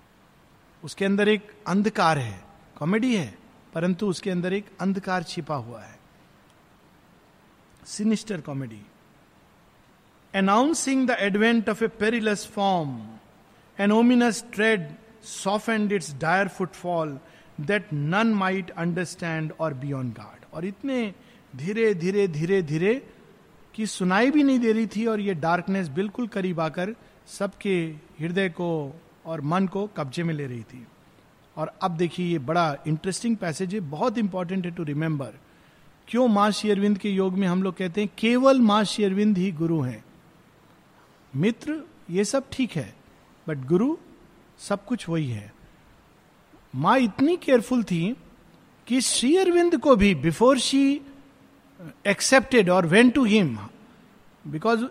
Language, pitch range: Hindi, 165-225 Hz